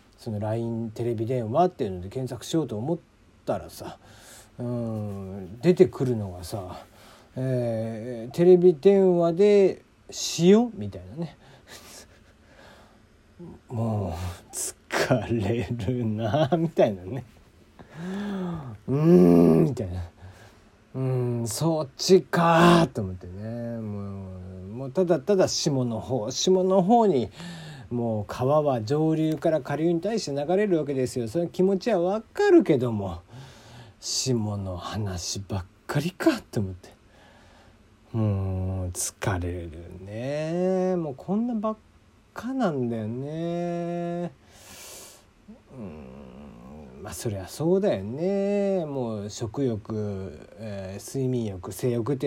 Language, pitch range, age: Japanese, 105-170 Hz, 40-59